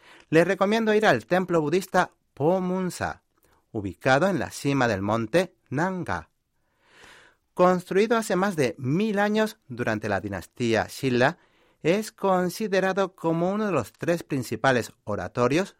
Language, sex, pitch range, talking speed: Spanish, male, 115-180 Hz, 130 wpm